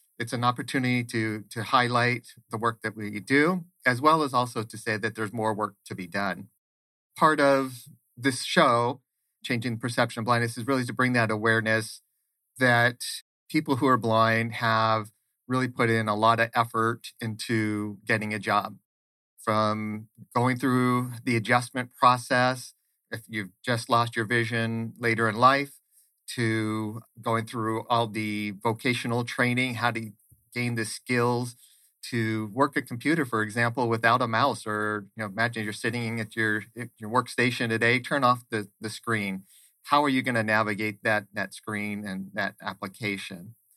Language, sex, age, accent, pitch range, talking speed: English, male, 40-59, American, 110-125 Hz, 165 wpm